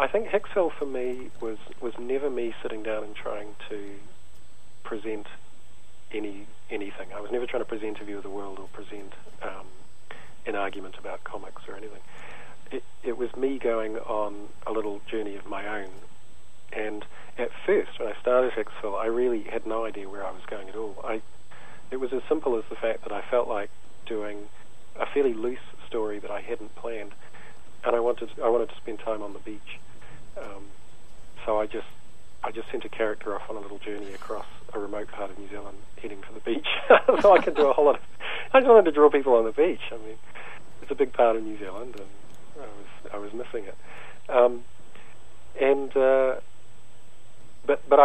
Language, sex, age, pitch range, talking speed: English, male, 40-59, 105-130 Hz, 205 wpm